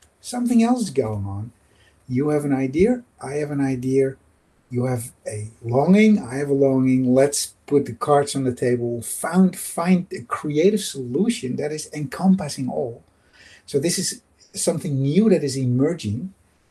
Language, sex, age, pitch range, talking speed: German, male, 50-69, 125-160 Hz, 160 wpm